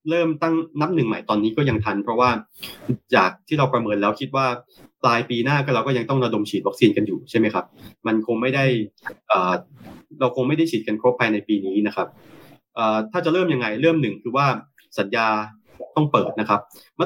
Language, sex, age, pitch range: Thai, male, 20-39, 105-145 Hz